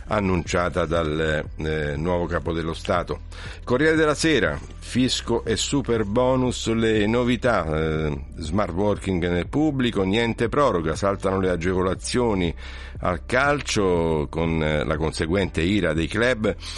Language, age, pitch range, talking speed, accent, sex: Italian, 60-79, 80-100 Hz, 125 wpm, native, male